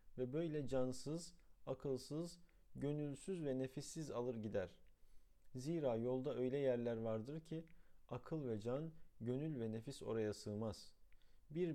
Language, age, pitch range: Turkish, 50-69, 105-150 Hz